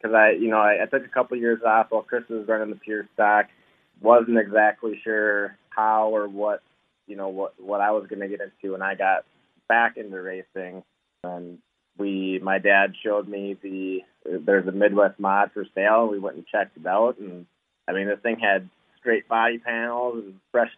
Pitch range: 100-115 Hz